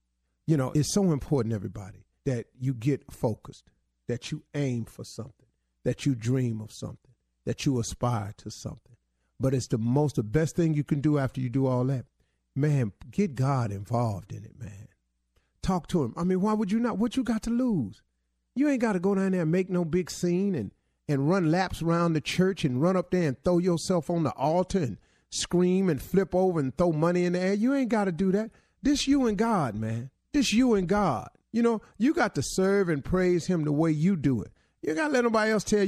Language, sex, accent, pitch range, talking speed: English, male, American, 135-210 Hz, 230 wpm